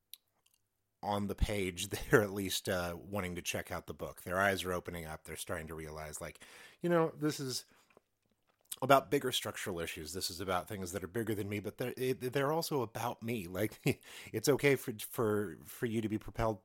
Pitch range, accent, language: 85-110 Hz, American, English